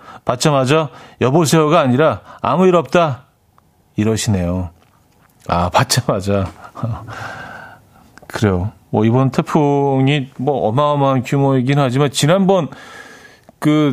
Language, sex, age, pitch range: Korean, male, 40-59, 115-160 Hz